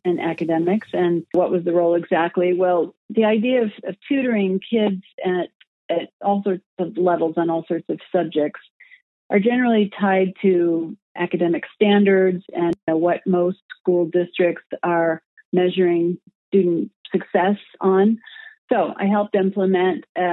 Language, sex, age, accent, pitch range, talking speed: English, female, 40-59, American, 175-200 Hz, 140 wpm